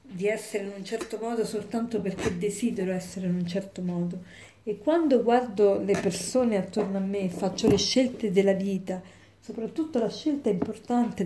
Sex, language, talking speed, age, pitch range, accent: female, Italian, 165 wpm, 40-59, 195-240 Hz, native